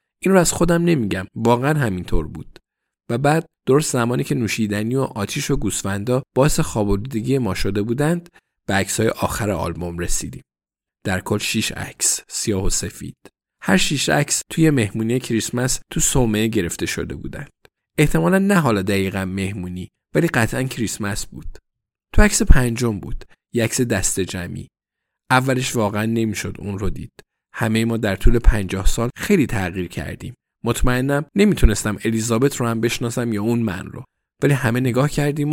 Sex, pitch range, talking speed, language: male, 100-130 Hz, 155 wpm, Persian